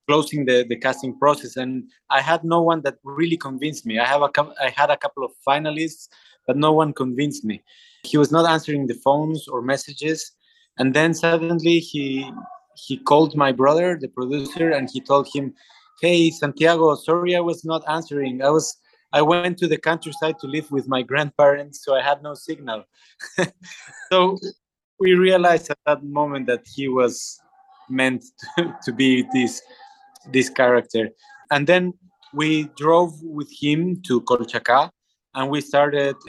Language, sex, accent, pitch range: English, male, Mexican, 130-160 Hz